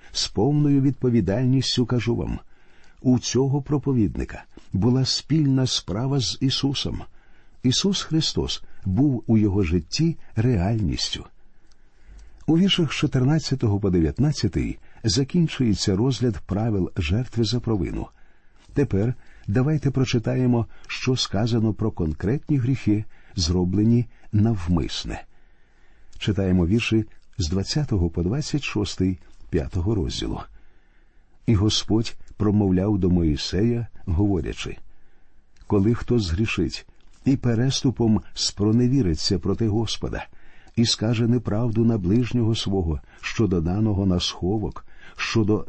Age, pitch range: 50-69, 95-125 Hz